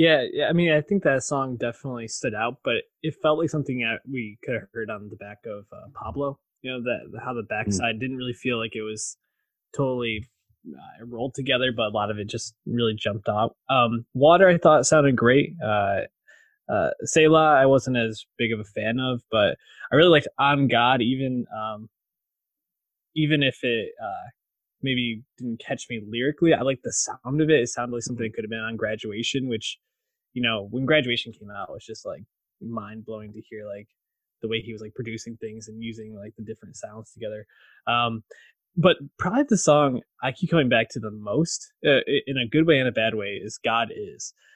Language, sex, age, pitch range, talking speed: English, male, 20-39, 110-150 Hz, 210 wpm